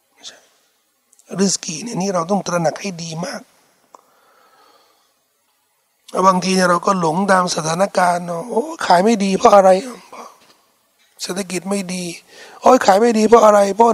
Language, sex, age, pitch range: Thai, male, 60-79, 175-235 Hz